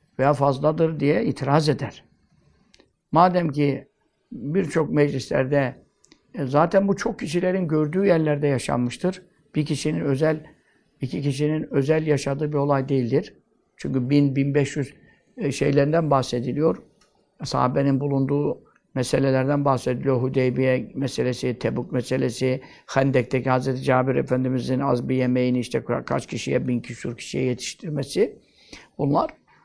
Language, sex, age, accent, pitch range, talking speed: Turkish, male, 60-79, native, 130-165 Hz, 115 wpm